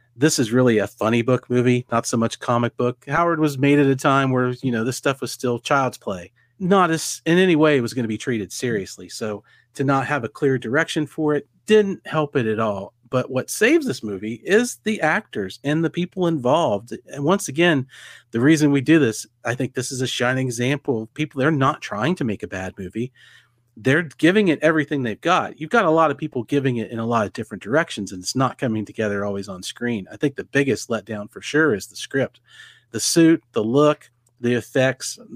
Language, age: English, 40-59